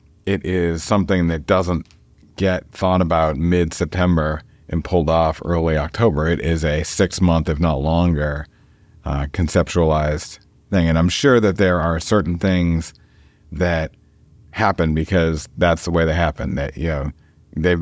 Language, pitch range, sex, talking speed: English, 80-90 Hz, male, 150 wpm